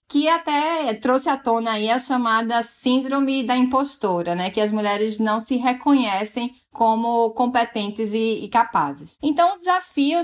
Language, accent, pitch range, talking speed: Portuguese, Brazilian, 220-295 Hz, 140 wpm